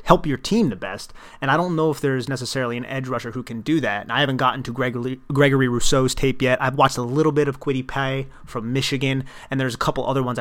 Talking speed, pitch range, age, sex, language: 260 wpm, 120-140 Hz, 30-49, male, English